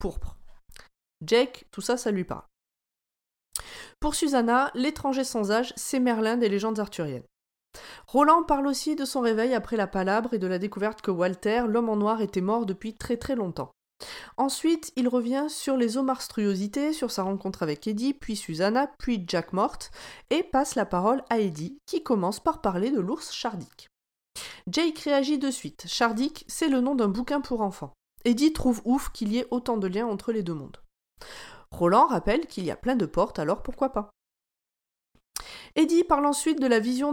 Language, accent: French, French